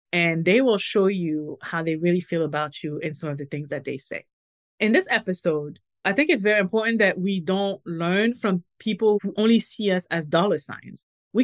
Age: 30-49